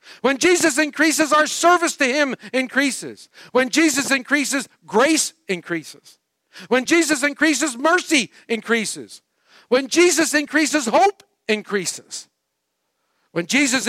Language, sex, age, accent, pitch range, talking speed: English, male, 50-69, American, 160-270 Hz, 110 wpm